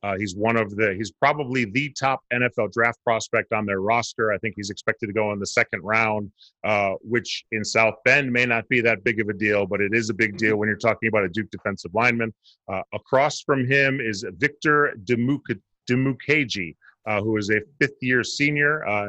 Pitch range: 105-125 Hz